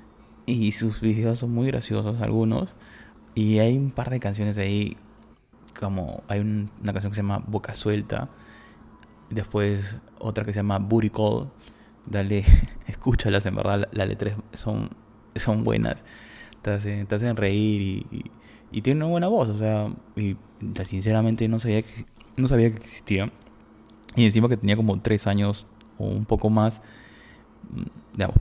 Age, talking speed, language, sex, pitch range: 20-39, 155 wpm, Spanish, male, 100-115 Hz